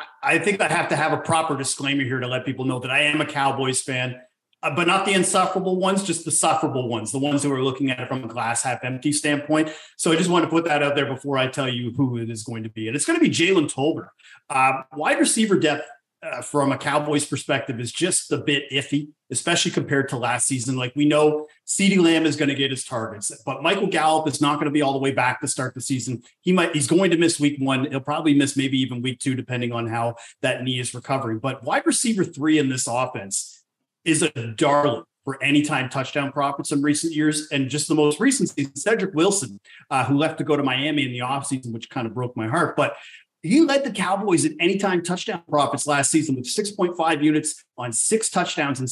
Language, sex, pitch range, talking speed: English, male, 130-160 Hz, 245 wpm